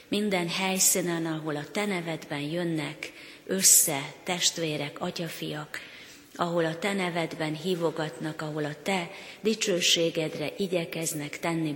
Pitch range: 155-180 Hz